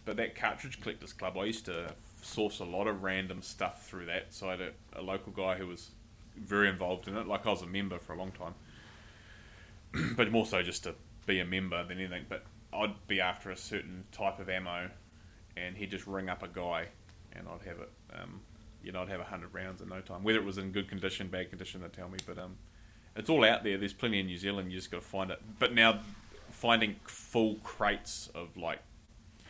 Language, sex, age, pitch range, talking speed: English, male, 20-39, 90-105 Hz, 230 wpm